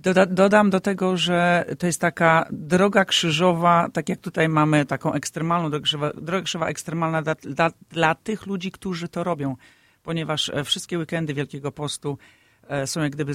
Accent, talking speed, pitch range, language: native, 150 wpm, 150-185 Hz, Polish